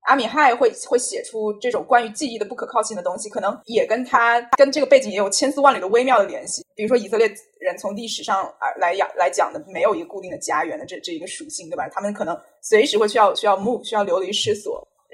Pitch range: 205-285 Hz